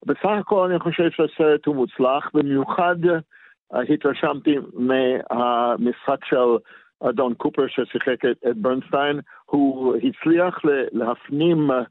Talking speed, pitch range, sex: 105 wpm, 130-160 Hz, male